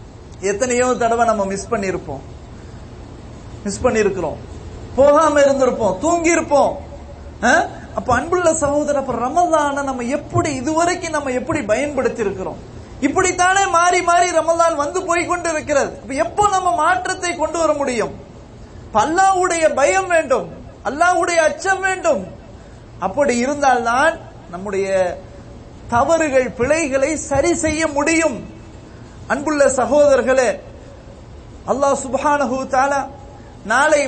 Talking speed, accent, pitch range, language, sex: 65 wpm, Indian, 255-335 Hz, English, male